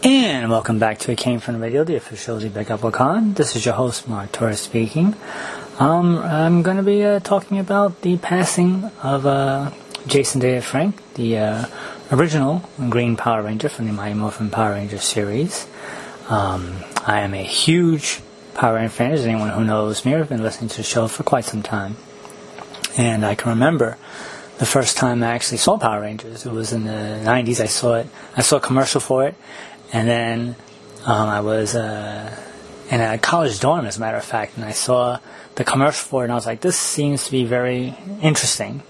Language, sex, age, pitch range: English, male, 30-49, 115-150 Hz